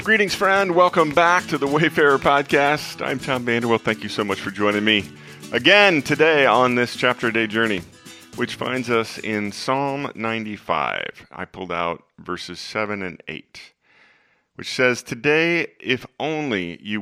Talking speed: 155 wpm